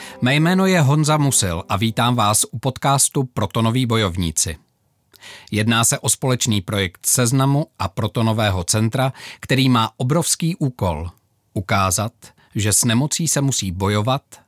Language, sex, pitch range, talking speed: Czech, male, 100-135 Hz, 135 wpm